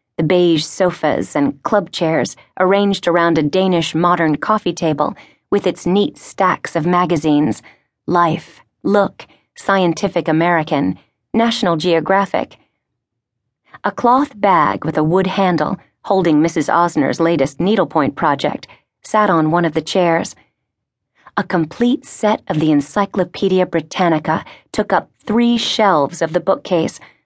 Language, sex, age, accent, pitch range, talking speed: English, female, 30-49, American, 165-205 Hz, 130 wpm